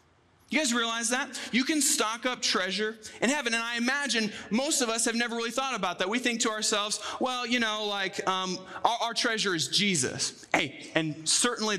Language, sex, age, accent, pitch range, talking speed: English, male, 20-39, American, 190-245 Hz, 205 wpm